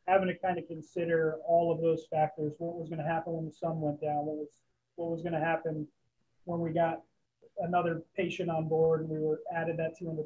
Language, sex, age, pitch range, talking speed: English, male, 20-39, 155-170 Hz, 230 wpm